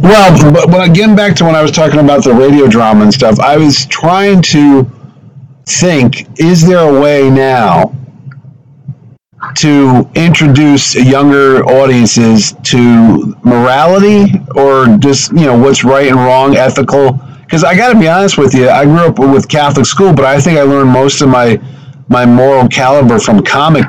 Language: English